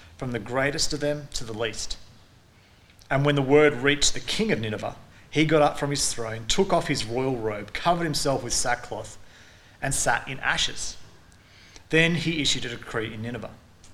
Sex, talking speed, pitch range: male, 185 wpm, 110-140 Hz